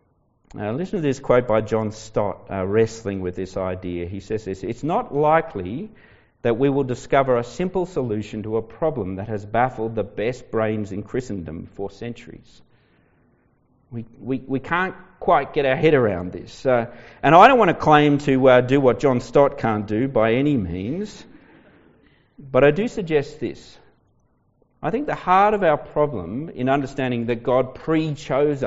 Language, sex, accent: English, male, Australian